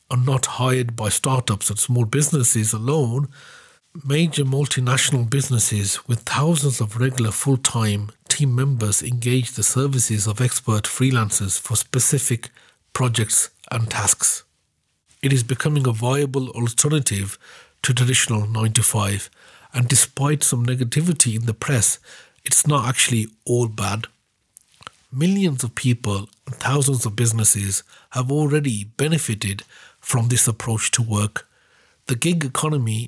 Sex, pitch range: male, 115-140 Hz